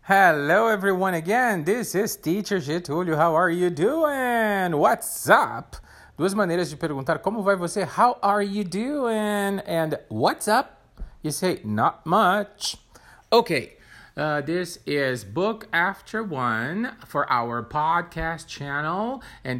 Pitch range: 145-200 Hz